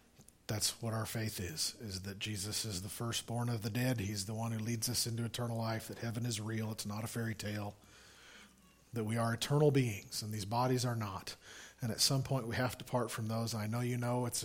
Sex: male